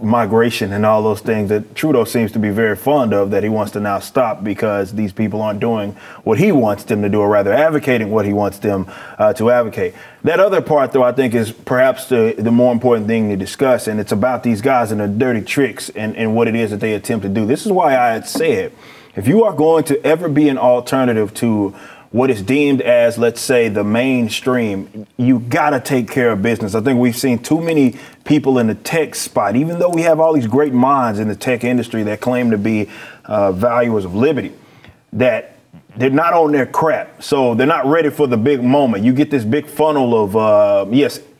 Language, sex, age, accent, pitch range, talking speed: English, male, 30-49, American, 110-145 Hz, 230 wpm